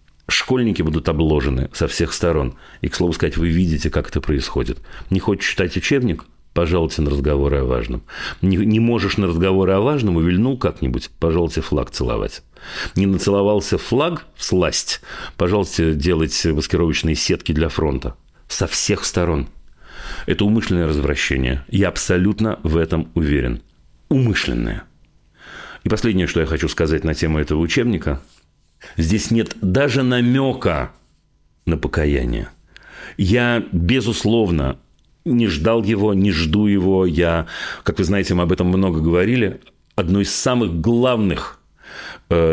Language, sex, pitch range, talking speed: Russian, male, 75-105 Hz, 135 wpm